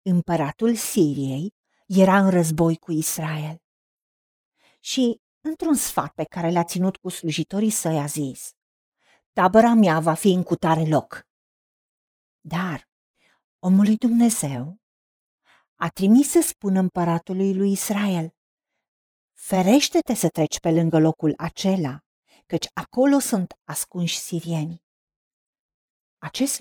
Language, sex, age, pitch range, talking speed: Romanian, female, 50-69, 165-250 Hz, 110 wpm